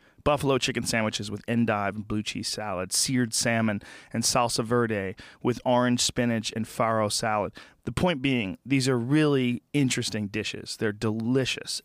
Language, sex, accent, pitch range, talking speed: English, male, American, 115-140 Hz, 150 wpm